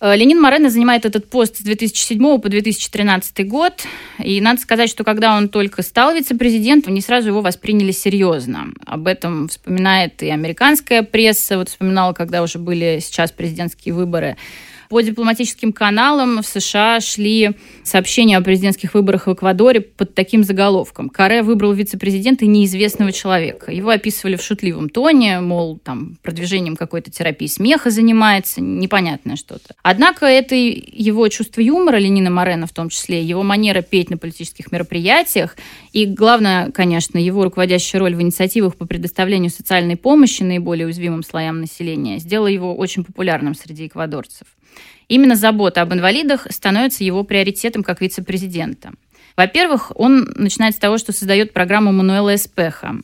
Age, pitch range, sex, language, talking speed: 20-39, 180-225 Hz, female, Russian, 145 wpm